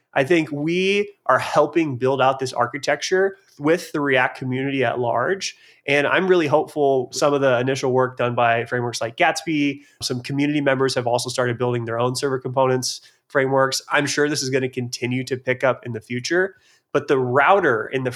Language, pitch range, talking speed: English, 120-140 Hz, 195 wpm